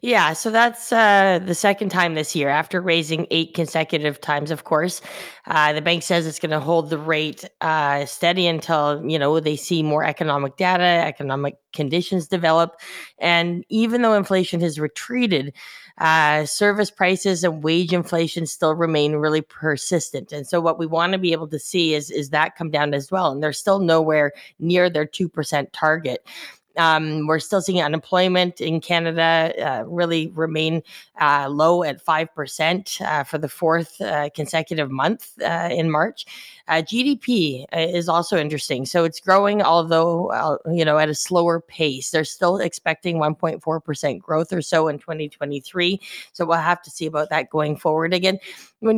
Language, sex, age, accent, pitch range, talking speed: English, female, 20-39, American, 155-180 Hz, 170 wpm